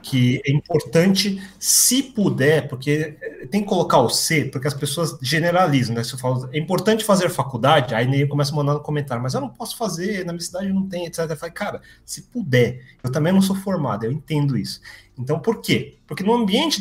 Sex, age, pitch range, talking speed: male, 30-49, 135-190 Hz, 215 wpm